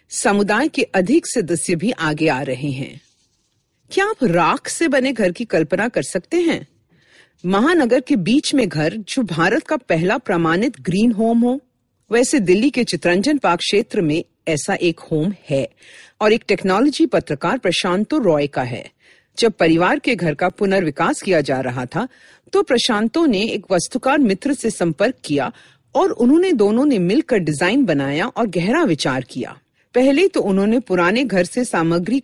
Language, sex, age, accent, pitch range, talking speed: Hindi, female, 50-69, native, 170-255 Hz, 170 wpm